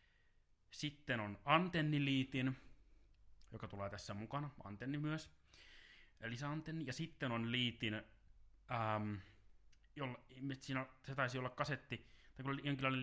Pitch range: 95-130 Hz